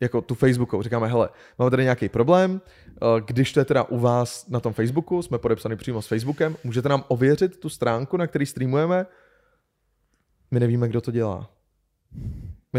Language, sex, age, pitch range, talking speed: Czech, male, 20-39, 120-140 Hz, 175 wpm